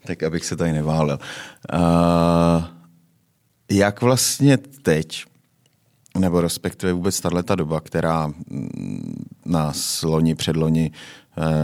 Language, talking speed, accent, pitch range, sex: Czech, 100 wpm, native, 80-90 Hz, male